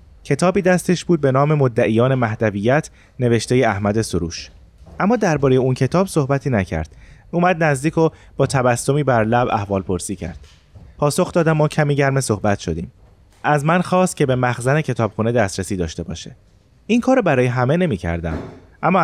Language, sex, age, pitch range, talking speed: Persian, male, 30-49, 100-160 Hz, 160 wpm